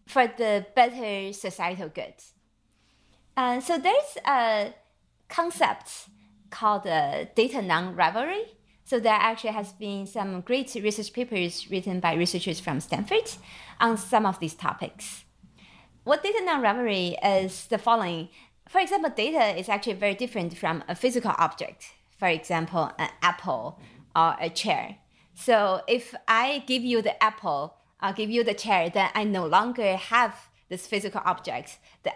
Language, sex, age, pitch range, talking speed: English, female, 30-49, 195-255 Hz, 145 wpm